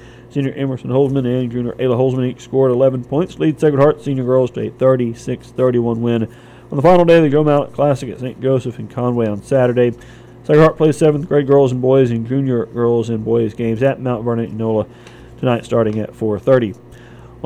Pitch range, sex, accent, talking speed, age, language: 120-140 Hz, male, American, 195 wpm, 40-59, English